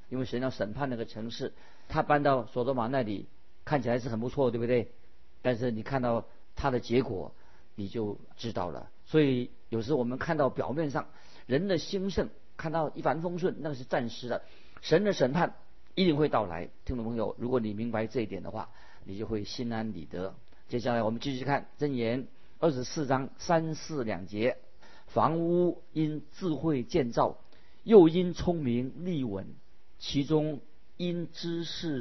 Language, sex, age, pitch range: Chinese, male, 50-69, 115-155 Hz